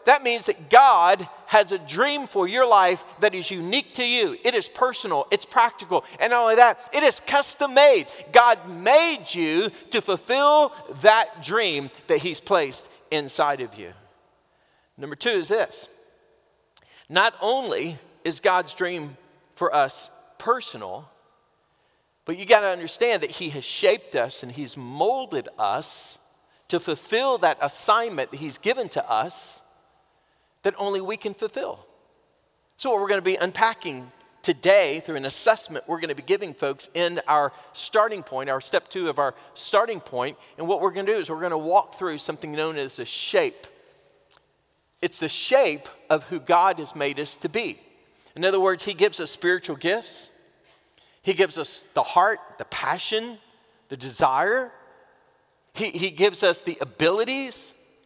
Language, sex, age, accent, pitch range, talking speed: English, male, 40-59, American, 165-255 Hz, 165 wpm